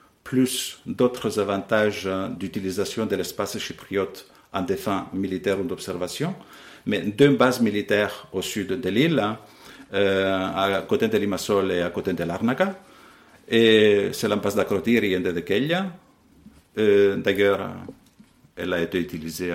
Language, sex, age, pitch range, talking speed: French, male, 50-69, 90-130 Hz, 125 wpm